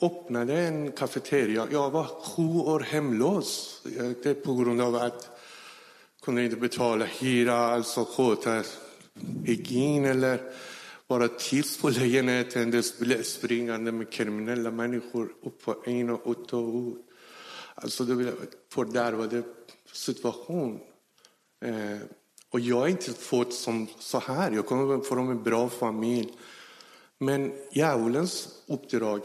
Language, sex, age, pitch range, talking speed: Swedish, male, 60-79, 115-135 Hz, 125 wpm